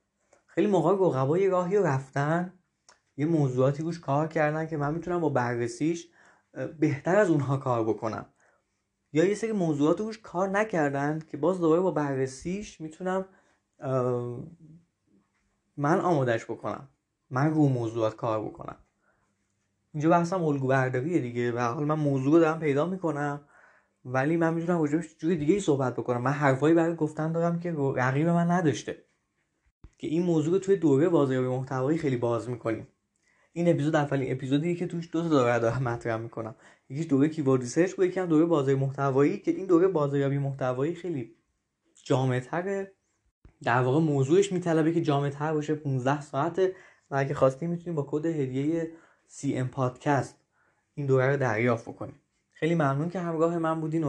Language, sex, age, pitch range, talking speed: Persian, male, 20-39, 130-165 Hz, 155 wpm